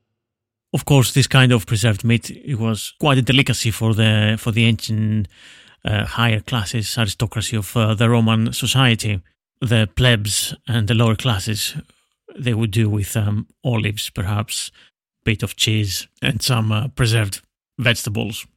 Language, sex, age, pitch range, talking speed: English, male, 30-49, 110-125 Hz, 155 wpm